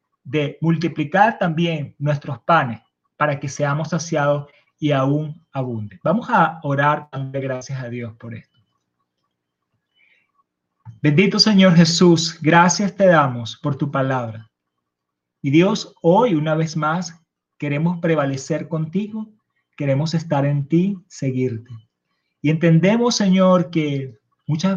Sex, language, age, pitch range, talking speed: male, Spanish, 30-49, 140-180 Hz, 120 wpm